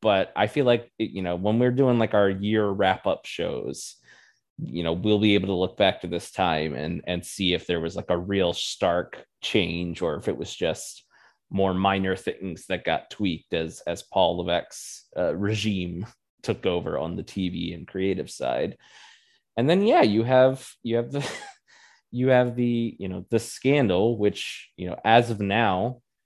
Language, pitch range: English, 95-115 Hz